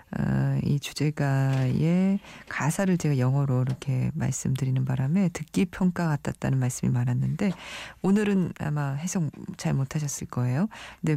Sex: female